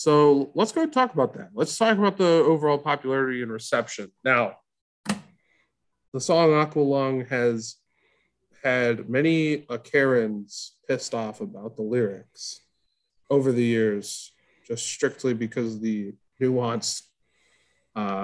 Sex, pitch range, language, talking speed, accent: male, 115-145 Hz, English, 125 wpm, American